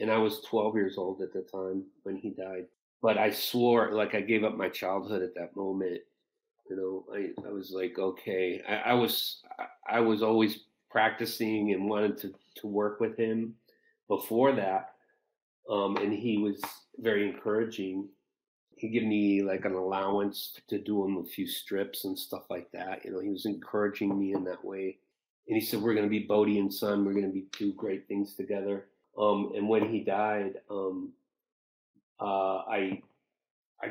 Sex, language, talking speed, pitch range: male, English, 185 wpm, 95-110 Hz